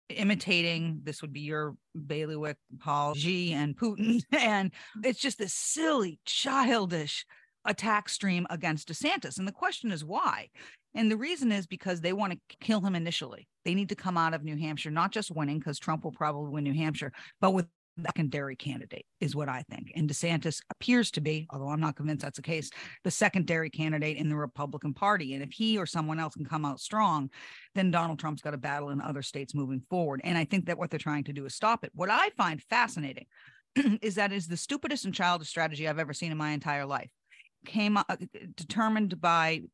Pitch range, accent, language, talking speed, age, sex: 150-210 Hz, American, English, 205 wpm, 40-59, female